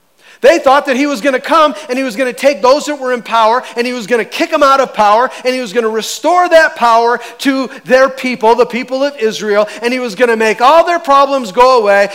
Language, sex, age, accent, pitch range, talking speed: English, male, 40-59, American, 180-245 Hz, 270 wpm